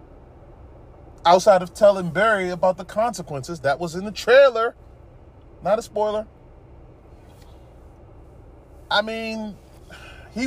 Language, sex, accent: English, male, American